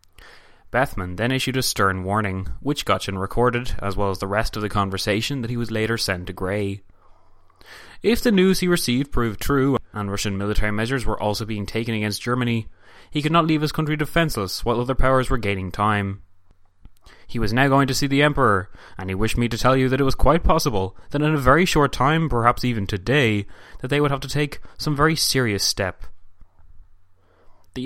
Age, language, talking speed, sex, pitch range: 20-39, English, 200 wpm, male, 95-130 Hz